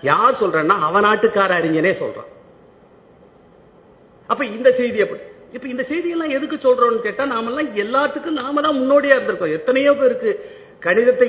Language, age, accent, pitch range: Tamil, 50-69, native, 225-275 Hz